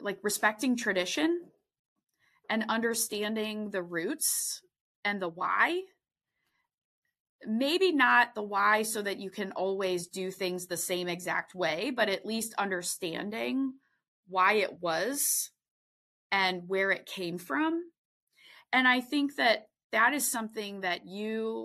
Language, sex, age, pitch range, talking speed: English, female, 20-39, 180-220 Hz, 130 wpm